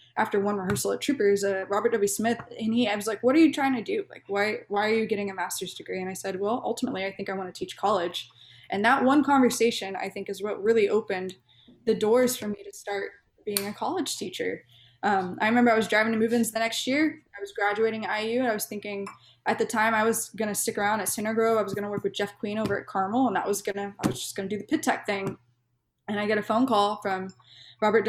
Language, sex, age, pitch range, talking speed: English, female, 10-29, 195-235 Hz, 270 wpm